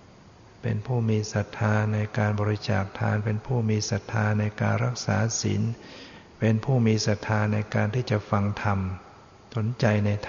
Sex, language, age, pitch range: male, Thai, 60-79, 105-115 Hz